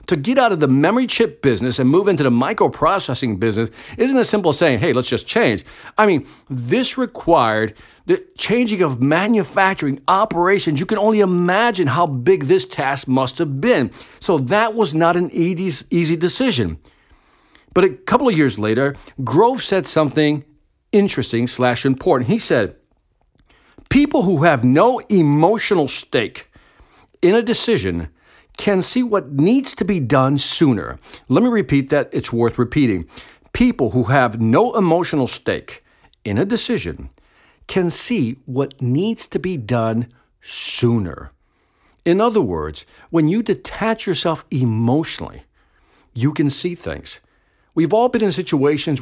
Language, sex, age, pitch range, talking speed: English, male, 50-69, 130-200 Hz, 150 wpm